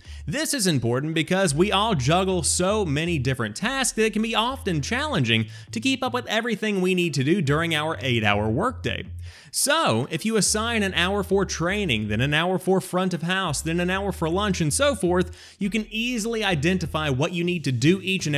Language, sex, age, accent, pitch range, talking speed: English, male, 30-49, American, 140-205 Hz, 210 wpm